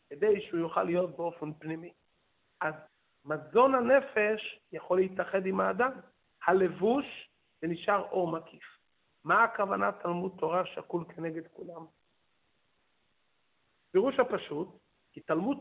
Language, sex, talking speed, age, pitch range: Hebrew, male, 110 wpm, 50-69, 185-240 Hz